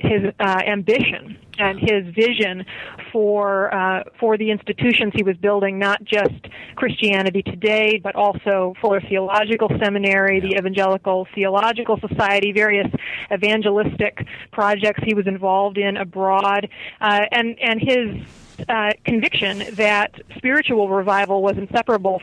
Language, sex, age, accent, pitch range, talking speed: English, female, 30-49, American, 195-220 Hz, 125 wpm